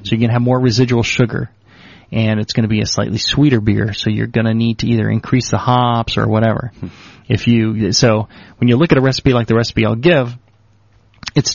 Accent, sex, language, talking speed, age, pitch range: American, male, English, 220 wpm, 30-49, 110-135 Hz